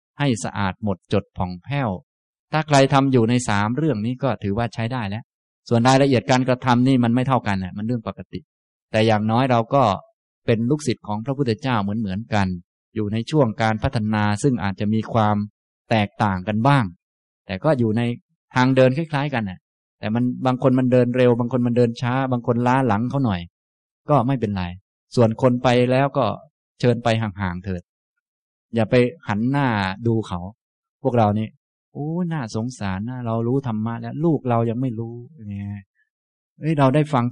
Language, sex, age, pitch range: Thai, male, 20-39, 100-130 Hz